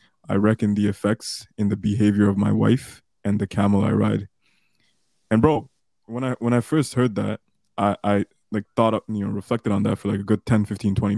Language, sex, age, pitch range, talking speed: English, male, 20-39, 105-120 Hz, 225 wpm